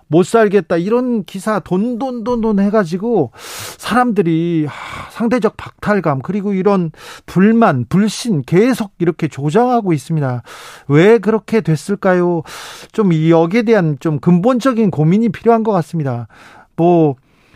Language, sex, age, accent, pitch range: Korean, male, 40-59, native, 150-200 Hz